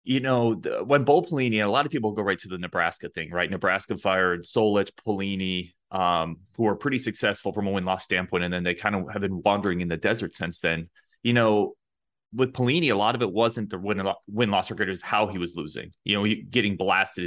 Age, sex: 30-49, male